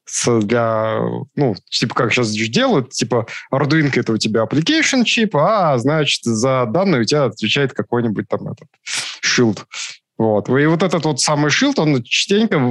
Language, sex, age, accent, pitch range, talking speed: Russian, male, 20-39, native, 120-150 Hz, 155 wpm